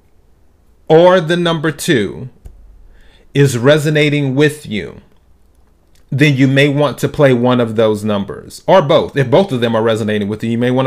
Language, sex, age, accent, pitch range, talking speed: English, male, 30-49, American, 105-145 Hz, 170 wpm